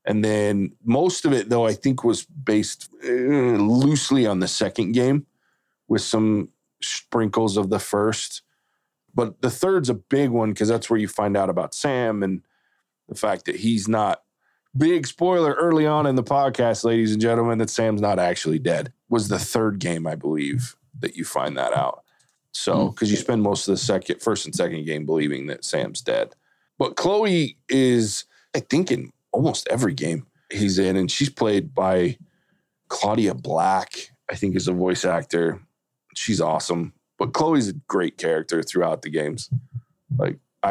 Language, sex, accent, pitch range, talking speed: English, male, American, 100-140 Hz, 175 wpm